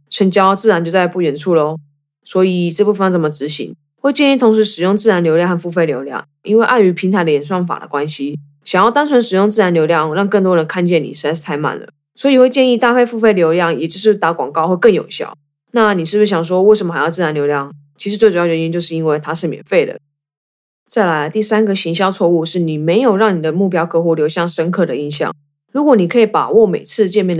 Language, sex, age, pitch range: Chinese, female, 20-39, 160-210 Hz